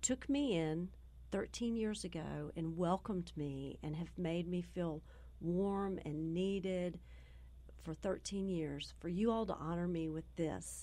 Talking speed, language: 155 wpm, English